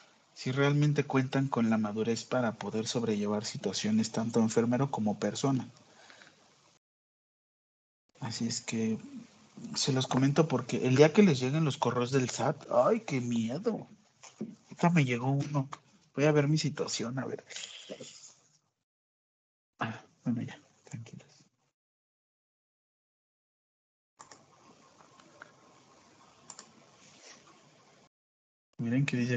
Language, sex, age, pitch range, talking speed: Spanish, male, 50-69, 120-175 Hz, 105 wpm